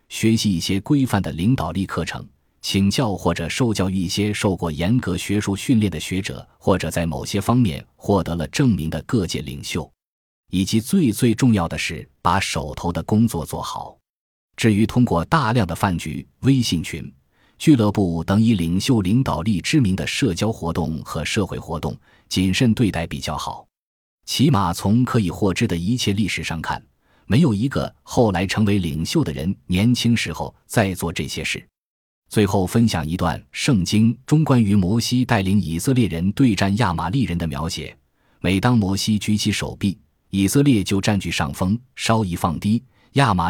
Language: Chinese